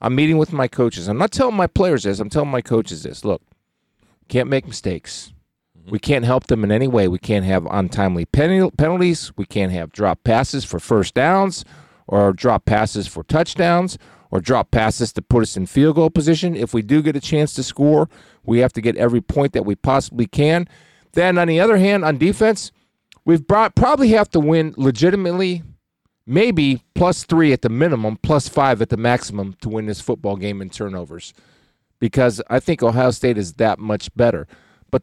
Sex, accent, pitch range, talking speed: male, American, 110-155 Hz, 195 wpm